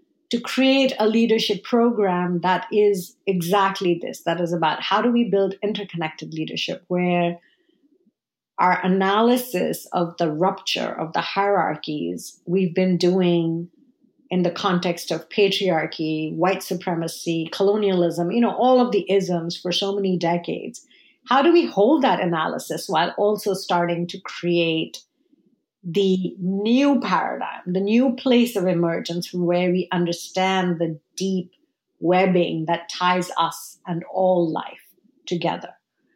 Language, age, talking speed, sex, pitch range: English, 50-69, 135 wpm, female, 175-220 Hz